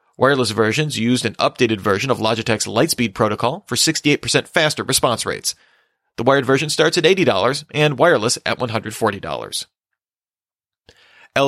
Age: 30-49